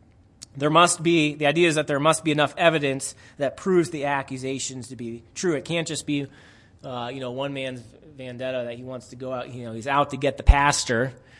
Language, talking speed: English, 225 wpm